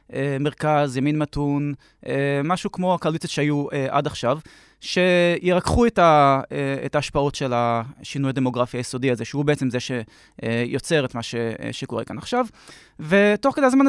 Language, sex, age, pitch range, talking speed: Hebrew, male, 20-39, 135-180 Hz, 140 wpm